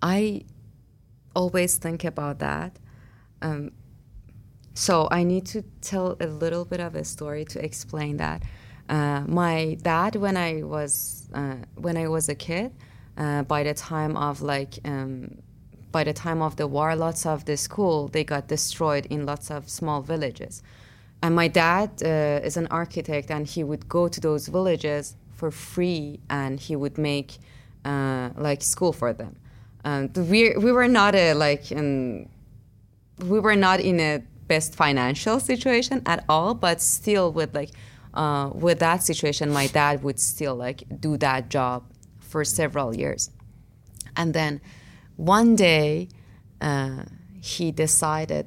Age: 20-39